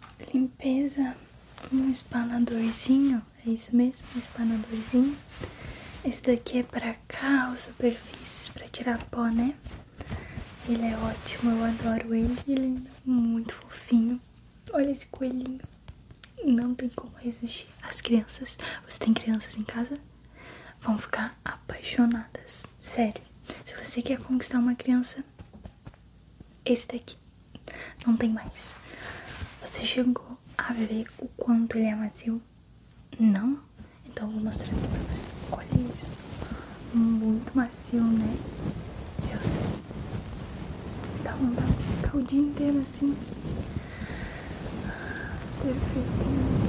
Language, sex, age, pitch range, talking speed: Portuguese, female, 10-29, 230-255 Hz, 115 wpm